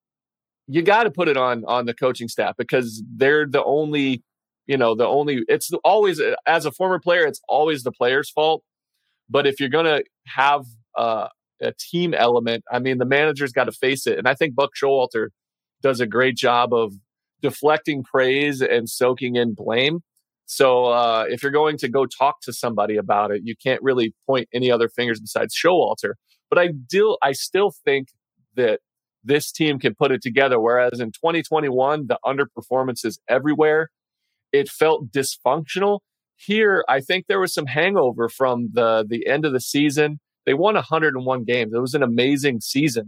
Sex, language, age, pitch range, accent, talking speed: male, English, 30-49, 125-155 Hz, American, 180 wpm